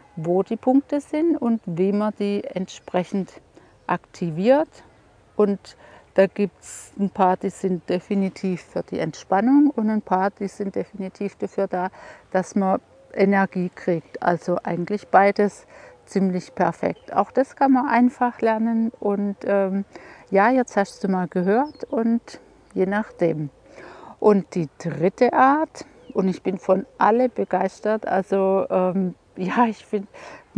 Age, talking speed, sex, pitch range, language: 50-69, 140 wpm, female, 185-225 Hz, German